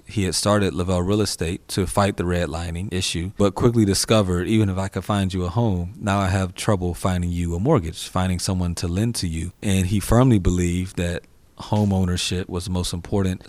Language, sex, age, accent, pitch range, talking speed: English, male, 30-49, American, 90-100 Hz, 210 wpm